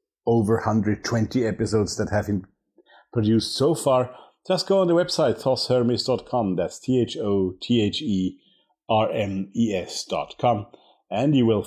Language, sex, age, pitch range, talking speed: English, male, 50-69, 90-115 Hz, 150 wpm